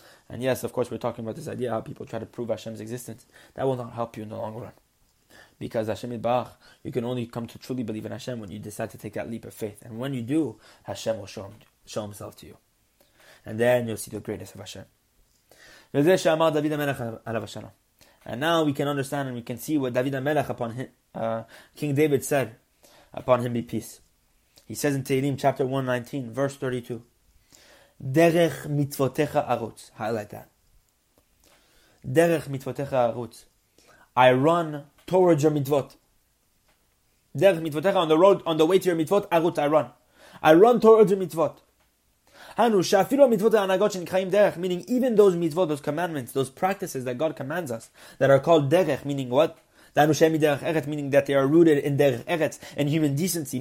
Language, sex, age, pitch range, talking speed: English, male, 20-39, 120-155 Hz, 185 wpm